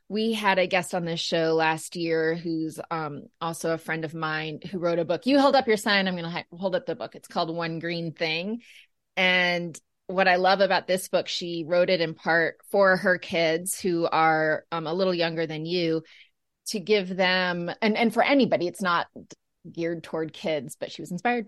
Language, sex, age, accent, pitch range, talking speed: English, female, 20-39, American, 170-200 Hz, 210 wpm